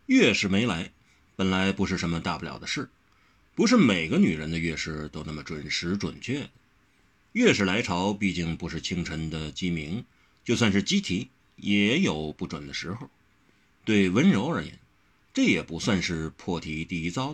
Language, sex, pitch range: Chinese, male, 80-105 Hz